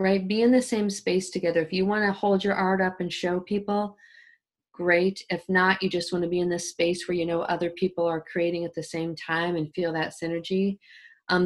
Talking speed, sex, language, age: 235 wpm, female, English, 40-59